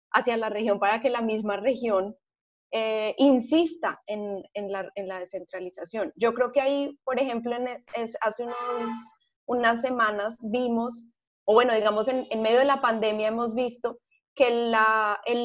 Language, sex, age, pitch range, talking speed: Spanish, female, 20-39, 205-245 Hz, 165 wpm